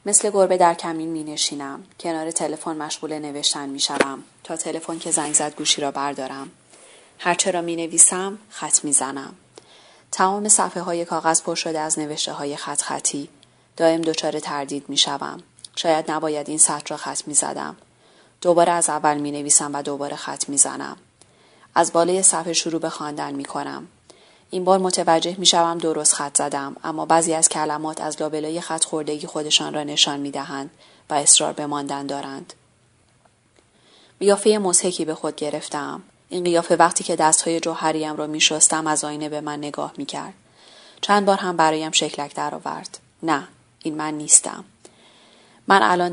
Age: 30-49